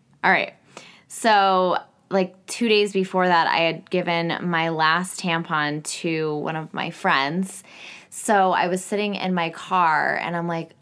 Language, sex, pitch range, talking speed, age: English, female, 165-205 Hz, 160 wpm, 20-39